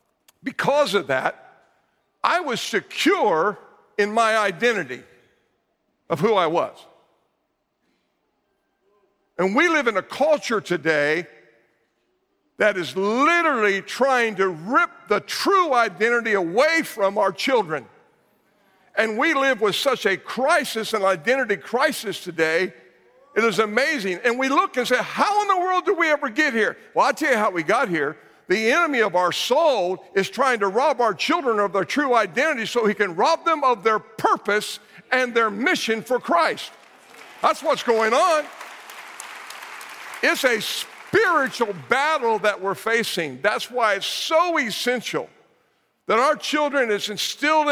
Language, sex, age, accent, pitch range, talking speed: English, male, 50-69, American, 205-280 Hz, 150 wpm